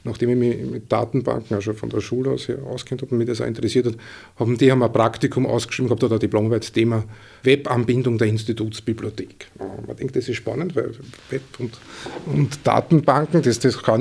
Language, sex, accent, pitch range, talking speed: German, male, Austrian, 110-135 Hz, 205 wpm